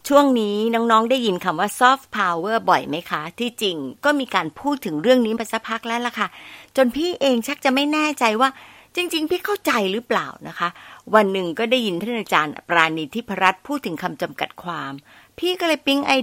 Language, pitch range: Thai, 180-265 Hz